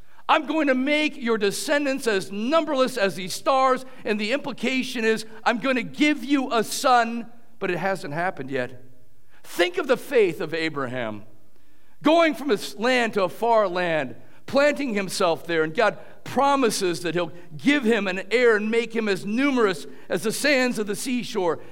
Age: 50-69